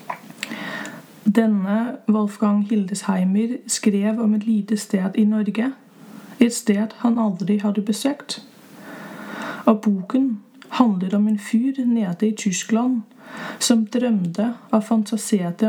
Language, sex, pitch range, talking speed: Danish, female, 205-235 Hz, 110 wpm